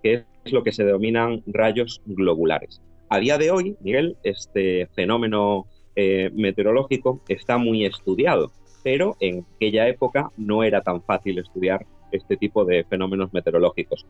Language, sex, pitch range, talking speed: Spanish, male, 95-115 Hz, 145 wpm